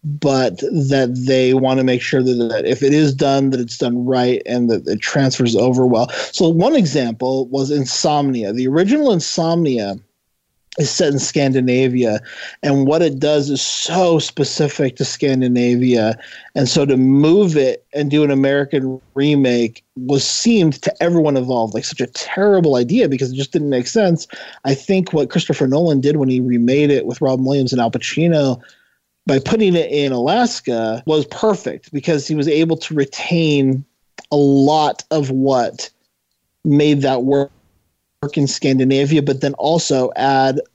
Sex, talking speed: male, 165 wpm